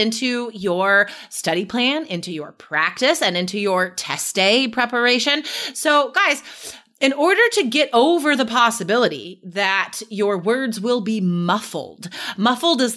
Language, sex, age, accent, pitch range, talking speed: English, female, 30-49, American, 190-265 Hz, 140 wpm